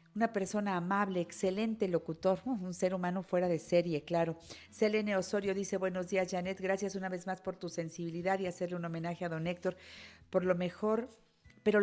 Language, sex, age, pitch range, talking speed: Spanish, female, 50-69, 185-245 Hz, 185 wpm